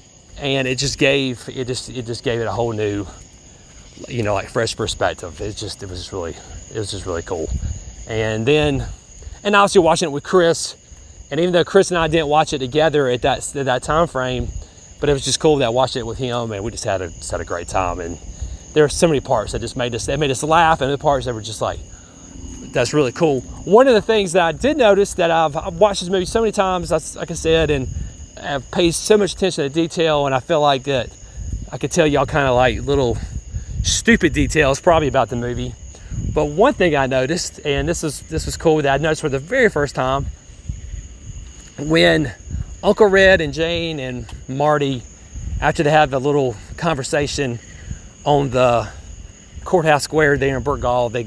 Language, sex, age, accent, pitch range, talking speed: English, male, 30-49, American, 110-155 Hz, 220 wpm